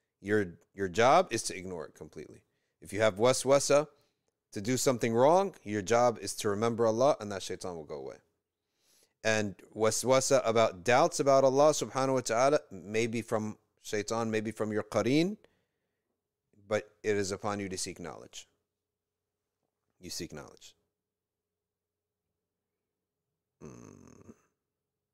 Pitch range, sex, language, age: 100-125 Hz, male, English, 30-49